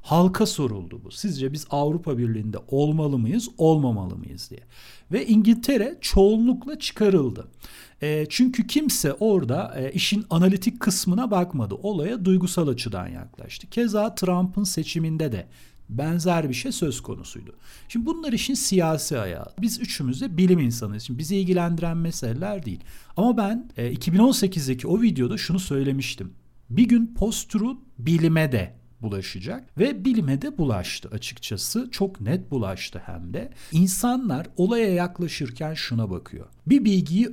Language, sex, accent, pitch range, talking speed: Turkish, male, native, 120-205 Hz, 125 wpm